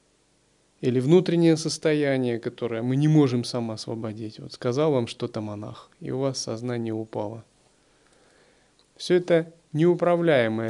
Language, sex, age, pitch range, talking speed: Russian, male, 30-49, 120-155 Hz, 120 wpm